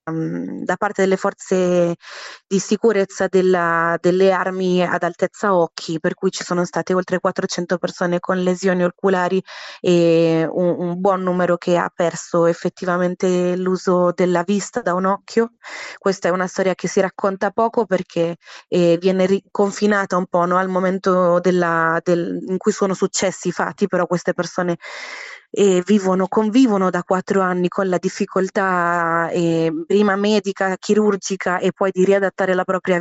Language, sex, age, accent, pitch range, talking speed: Italian, female, 20-39, native, 175-195 Hz, 145 wpm